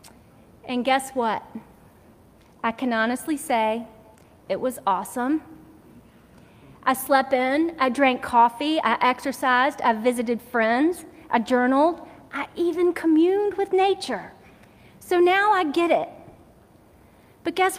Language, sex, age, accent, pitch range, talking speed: English, female, 40-59, American, 255-330 Hz, 120 wpm